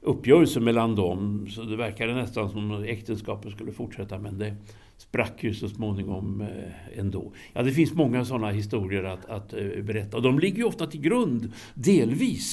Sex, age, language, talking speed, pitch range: male, 60-79, Danish, 170 wpm, 105-145 Hz